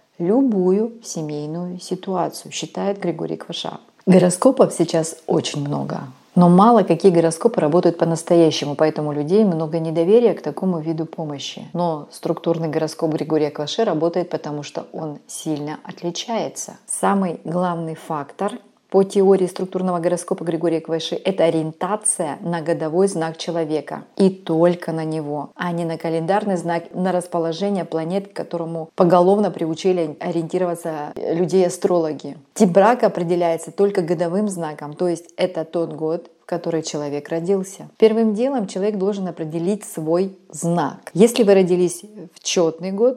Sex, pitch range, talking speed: female, 165-195 Hz, 130 wpm